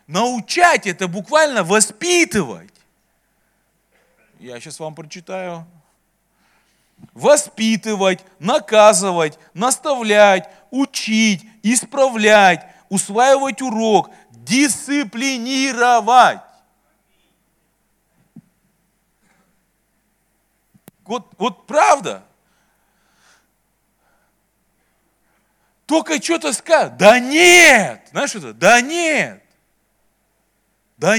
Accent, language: native, Russian